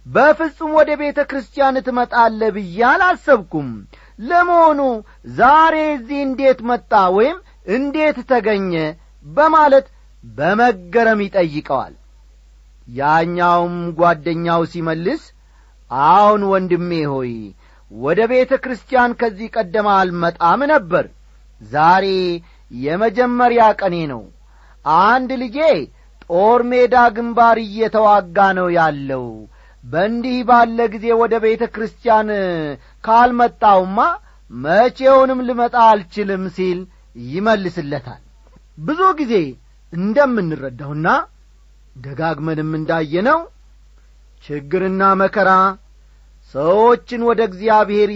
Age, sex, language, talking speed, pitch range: 40-59, male, Amharic, 80 wpm, 160-245 Hz